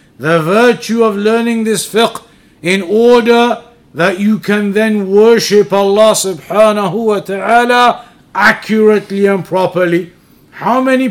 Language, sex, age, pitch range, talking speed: English, male, 50-69, 195-235 Hz, 120 wpm